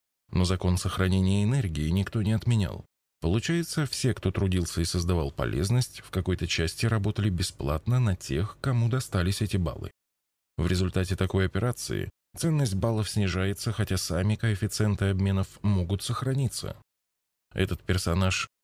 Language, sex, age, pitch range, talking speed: Russian, male, 20-39, 90-110 Hz, 130 wpm